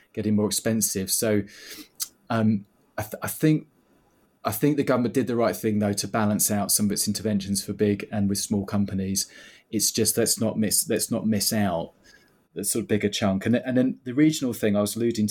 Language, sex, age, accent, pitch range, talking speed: English, male, 20-39, British, 100-115 Hz, 215 wpm